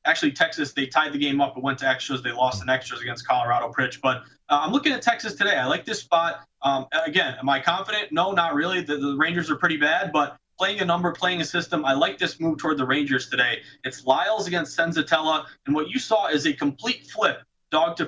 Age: 20-39